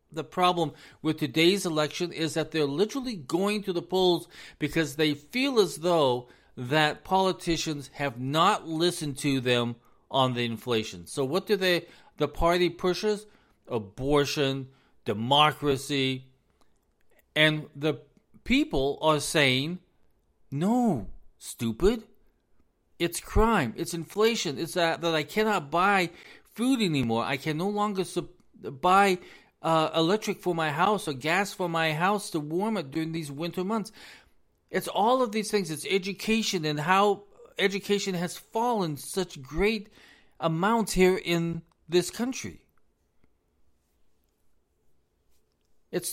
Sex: male